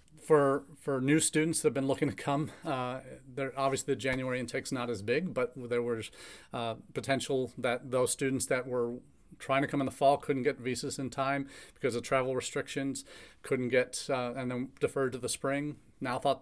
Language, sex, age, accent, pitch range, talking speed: English, male, 40-59, American, 120-140 Hz, 195 wpm